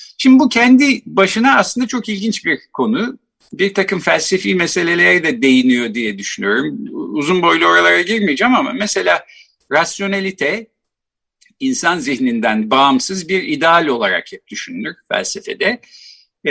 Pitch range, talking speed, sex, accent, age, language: 170-250 Hz, 120 wpm, male, native, 50-69, Turkish